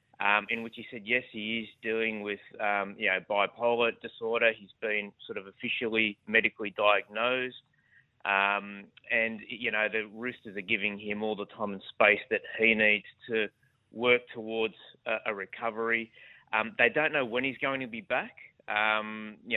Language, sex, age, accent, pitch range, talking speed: English, male, 20-39, Australian, 105-120 Hz, 175 wpm